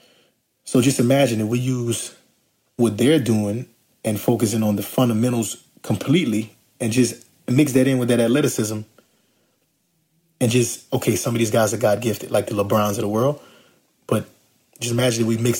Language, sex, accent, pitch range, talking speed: English, male, American, 110-125 Hz, 170 wpm